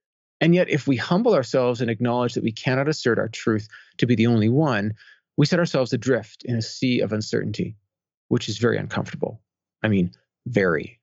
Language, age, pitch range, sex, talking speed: English, 30-49, 110-135 Hz, male, 190 wpm